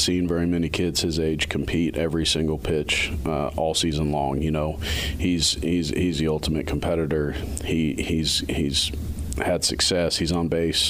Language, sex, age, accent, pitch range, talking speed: English, male, 40-59, American, 80-90 Hz, 165 wpm